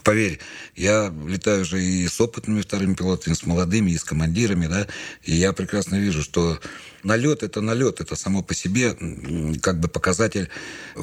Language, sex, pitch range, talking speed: Russian, male, 80-100 Hz, 165 wpm